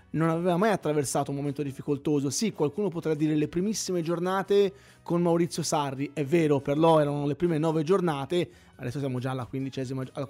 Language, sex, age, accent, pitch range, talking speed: Italian, male, 20-39, native, 145-180 Hz, 185 wpm